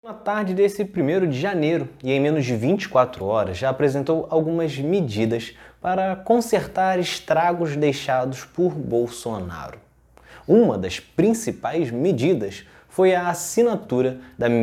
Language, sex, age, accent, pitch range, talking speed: Portuguese, male, 20-39, Brazilian, 120-185 Hz, 125 wpm